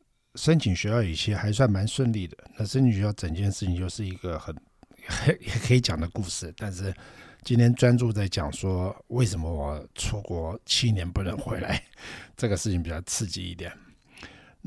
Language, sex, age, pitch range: Chinese, male, 60-79, 95-125 Hz